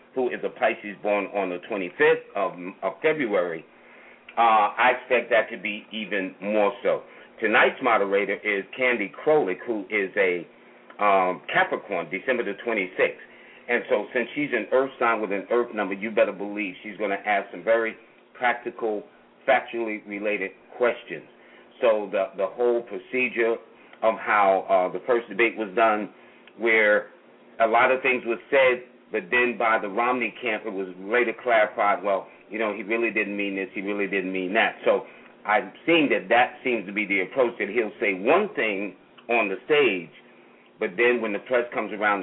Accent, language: American, English